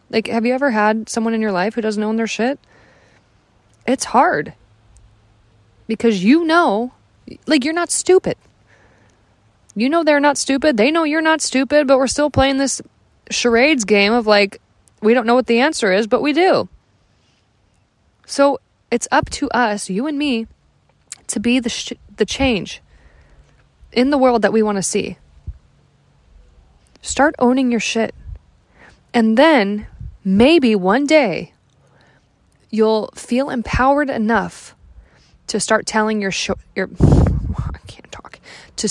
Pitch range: 185-255 Hz